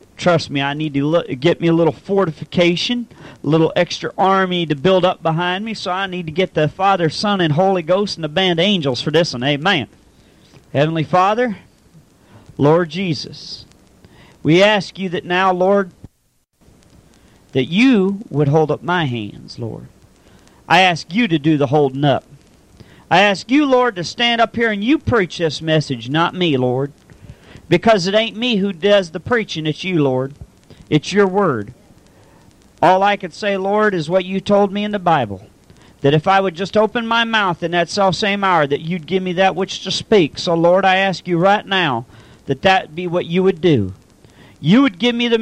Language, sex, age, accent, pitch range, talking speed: English, male, 40-59, American, 150-195 Hz, 195 wpm